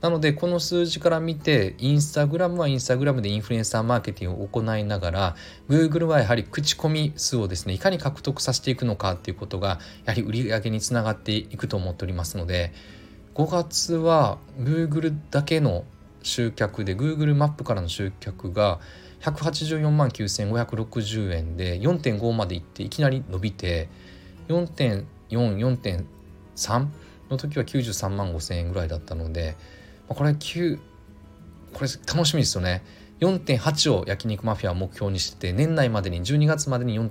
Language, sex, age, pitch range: Japanese, male, 20-39, 95-145 Hz